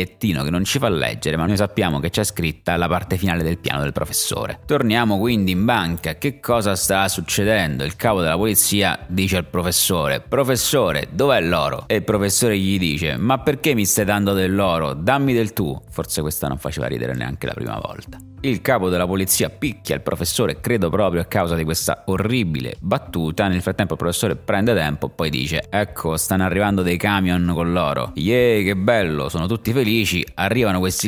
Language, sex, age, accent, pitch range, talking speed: Italian, male, 30-49, native, 85-105 Hz, 190 wpm